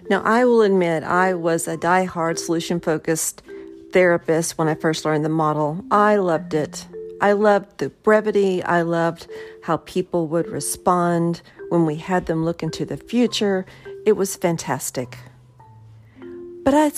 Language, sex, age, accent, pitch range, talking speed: English, female, 50-69, American, 155-210 Hz, 150 wpm